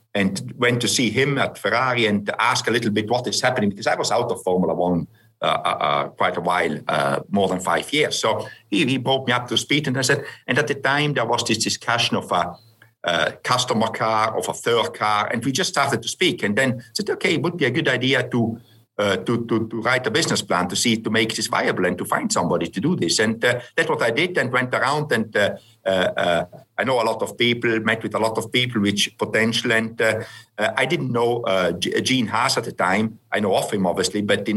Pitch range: 105-125 Hz